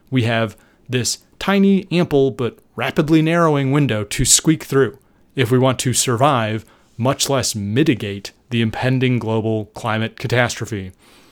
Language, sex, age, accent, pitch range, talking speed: English, male, 30-49, American, 110-140 Hz, 135 wpm